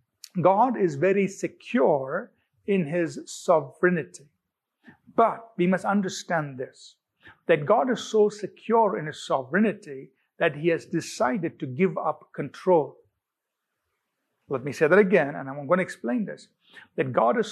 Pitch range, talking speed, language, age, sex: 155-195 Hz, 145 wpm, English, 50-69, male